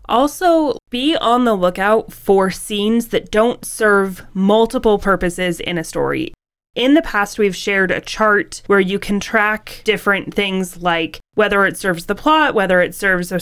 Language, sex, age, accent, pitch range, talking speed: English, female, 20-39, American, 190-240 Hz, 170 wpm